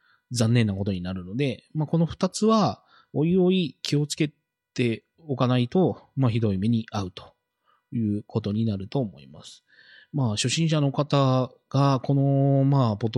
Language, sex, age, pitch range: Japanese, male, 20-39, 115-150 Hz